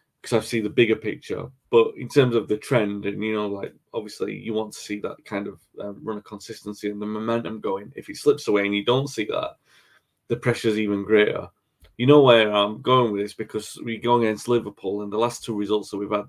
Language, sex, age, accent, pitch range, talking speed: English, male, 20-39, British, 100-115 Hz, 245 wpm